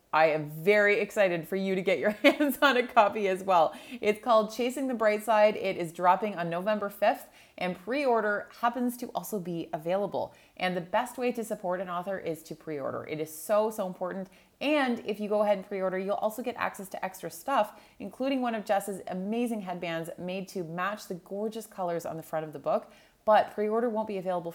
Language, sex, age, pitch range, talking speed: English, female, 30-49, 170-215 Hz, 215 wpm